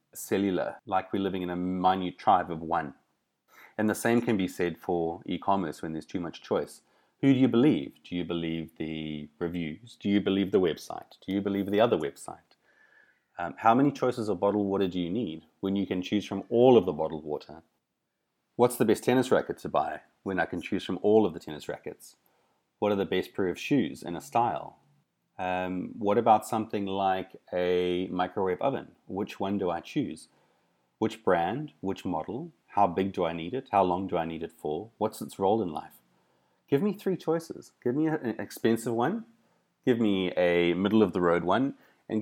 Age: 30-49